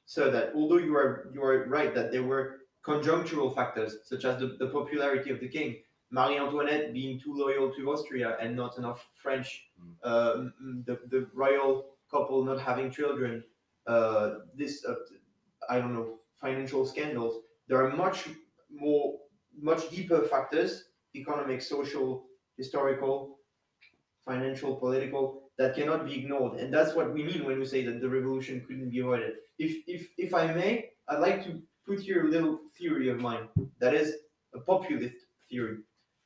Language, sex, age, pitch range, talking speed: English, male, 20-39, 130-160 Hz, 160 wpm